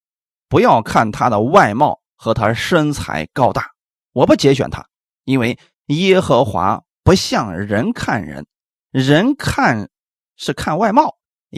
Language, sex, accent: Chinese, male, native